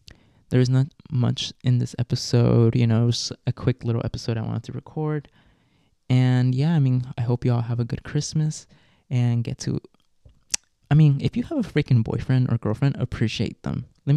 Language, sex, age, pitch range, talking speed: English, male, 20-39, 115-135 Hz, 185 wpm